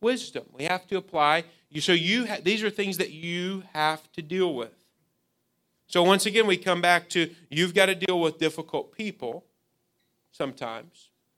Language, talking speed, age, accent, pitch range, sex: English, 170 wpm, 40-59, American, 150-185 Hz, male